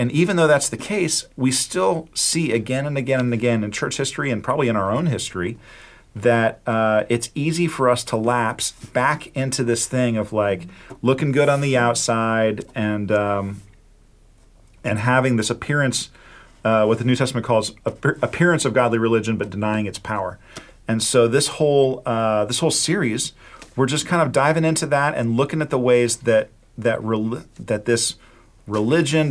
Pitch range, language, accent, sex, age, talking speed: 110-130 Hz, English, American, male, 40-59, 180 wpm